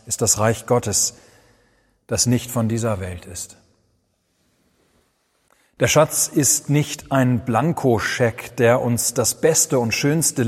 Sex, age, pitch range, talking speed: male, 40-59, 110-125 Hz, 125 wpm